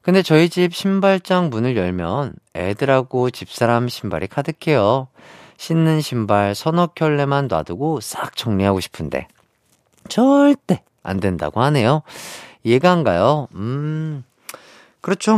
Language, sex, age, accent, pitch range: Korean, male, 40-59, native, 105-170 Hz